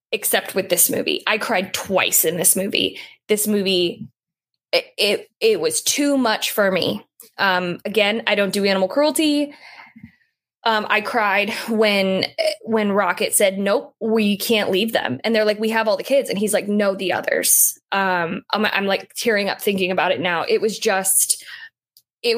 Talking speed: 175 wpm